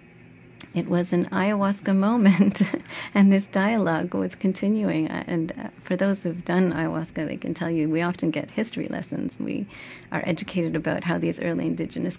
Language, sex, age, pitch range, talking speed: English, female, 30-49, 160-190 Hz, 160 wpm